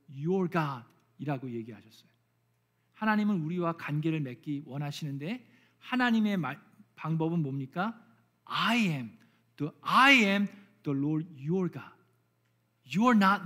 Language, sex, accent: Korean, male, native